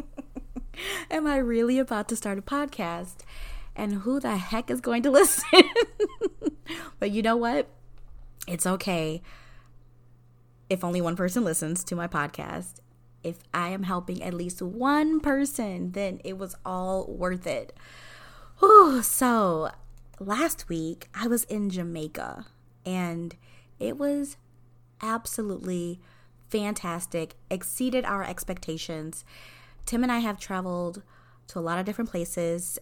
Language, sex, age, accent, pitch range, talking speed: English, female, 20-39, American, 155-210 Hz, 130 wpm